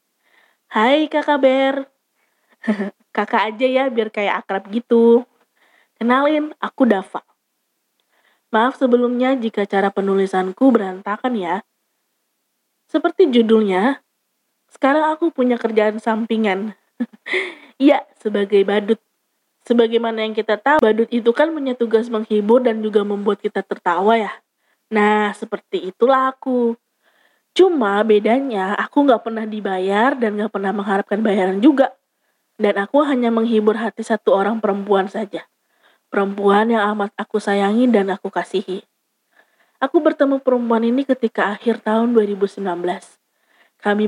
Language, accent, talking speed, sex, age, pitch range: Indonesian, native, 120 wpm, female, 20-39, 205-245 Hz